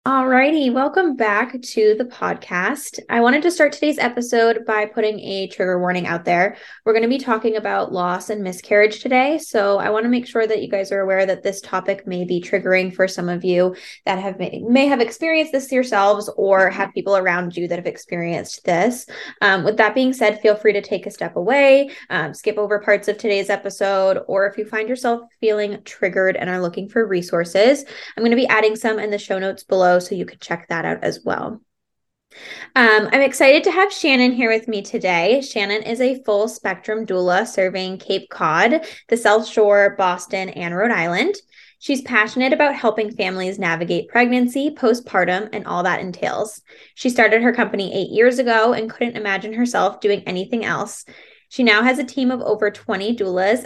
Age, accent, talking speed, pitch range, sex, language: 10-29, American, 195 wpm, 195-245 Hz, female, English